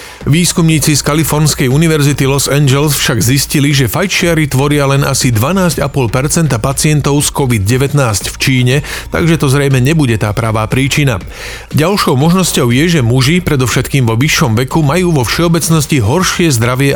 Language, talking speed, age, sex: Slovak, 140 wpm, 40-59, male